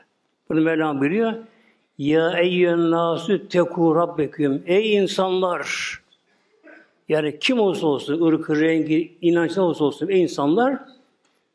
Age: 60-79